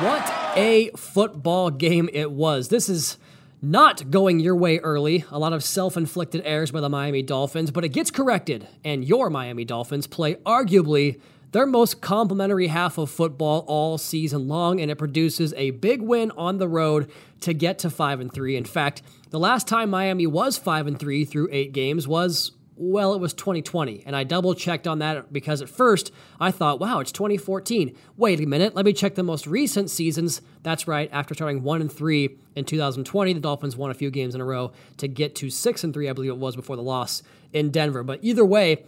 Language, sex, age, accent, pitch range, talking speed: English, male, 20-39, American, 145-185 Hz, 200 wpm